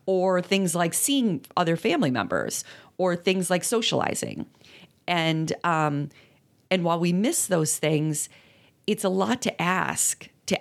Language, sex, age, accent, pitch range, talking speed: English, female, 40-59, American, 155-210 Hz, 140 wpm